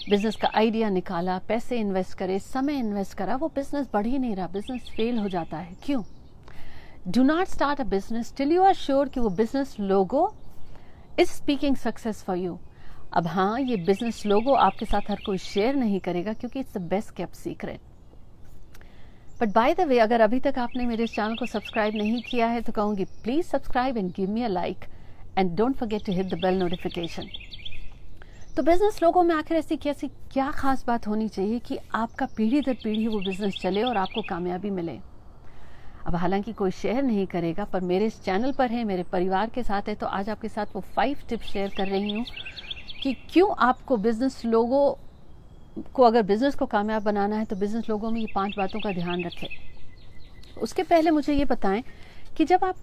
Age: 50-69